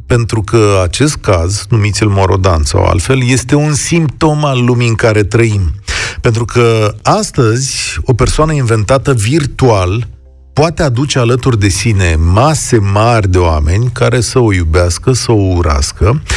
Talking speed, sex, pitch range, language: 145 wpm, male, 100-130 Hz, Romanian